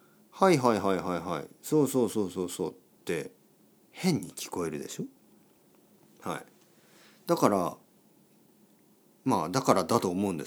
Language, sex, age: Japanese, male, 50-69